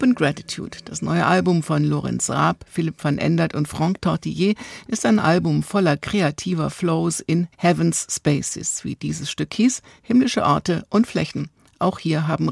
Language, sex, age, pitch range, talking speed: German, female, 60-79, 150-175 Hz, 160 wpm